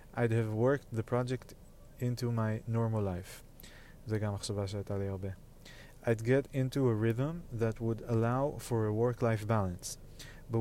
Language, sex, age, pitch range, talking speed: Hebrew, male, 20-39, 110-130 Hz, 125 wpm